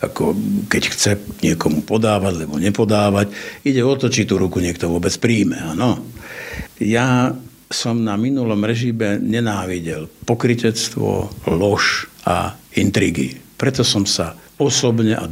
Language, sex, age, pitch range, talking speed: Slovak, male, 60-79, 90-125 Hz, 125 wpm